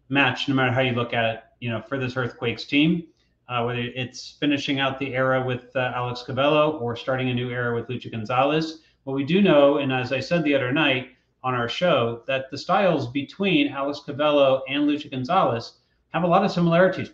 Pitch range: 125-155 Hz